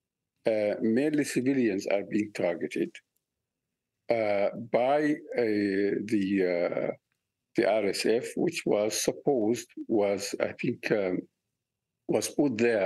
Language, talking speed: English, 105 wpm